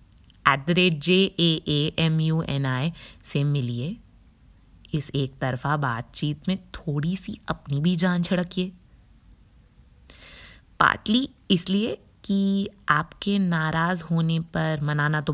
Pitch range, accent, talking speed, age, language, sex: 130-185 Hz, native, 115 wpm, 20-39, Hindi, female